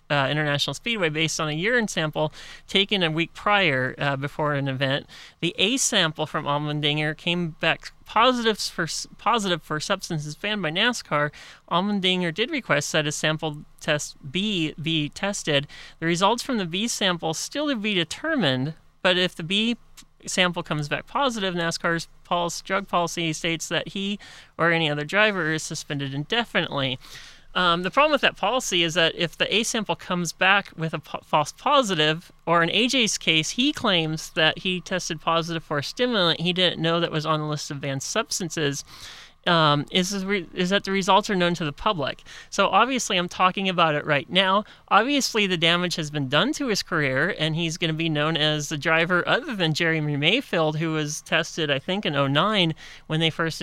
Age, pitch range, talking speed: 30-49, 155-195 Hz, 185 wpm